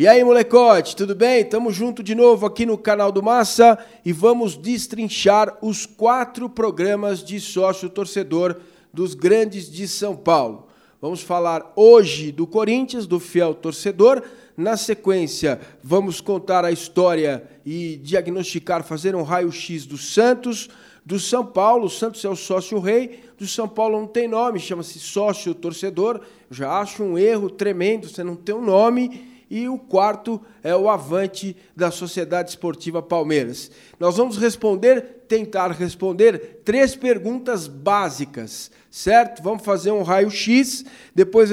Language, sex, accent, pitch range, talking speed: Portuguese, male, Brazilian, 180-225 Hz, 145 wpm